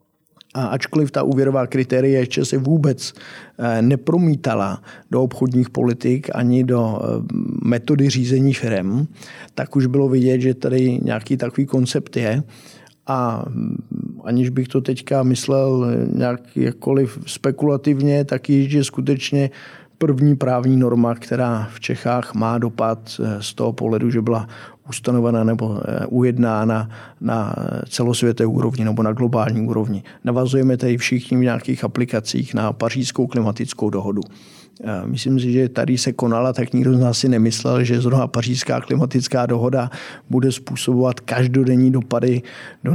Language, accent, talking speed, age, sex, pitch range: Czech, native, 130 wpm, 50-69, male, 115-135 Hz